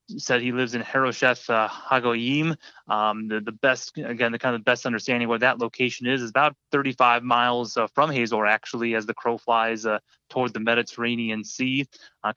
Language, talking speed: English, 195 wpm